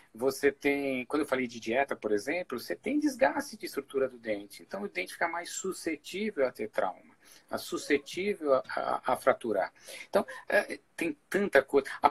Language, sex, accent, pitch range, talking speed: Portuguese, male, Brazilian, 125-170 Hz, 165 wpm